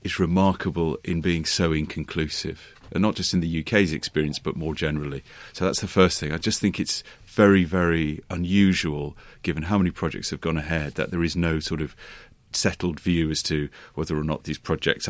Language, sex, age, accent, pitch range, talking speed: English, male, 30-49, British, 75-95 Hz, 200 wpm